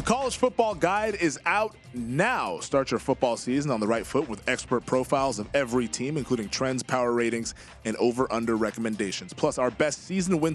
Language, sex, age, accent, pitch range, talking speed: English, male, 30-49, American, 120-150 Hz, 190 wpm